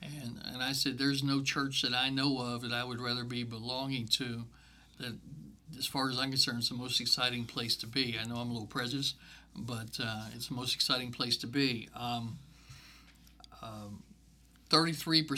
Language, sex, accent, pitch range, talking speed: English, male, American, 120-140 Hz, 185 wpm